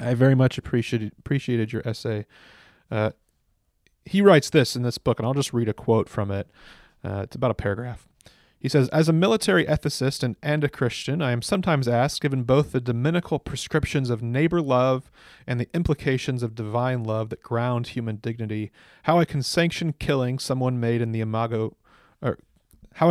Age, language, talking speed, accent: 30-49, English, 185 wpm, American